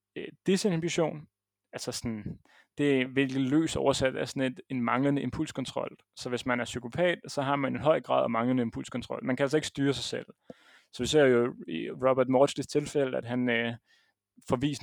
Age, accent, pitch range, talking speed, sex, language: 30-49, native, 120-140 Hz, 185 wpm, male, Danish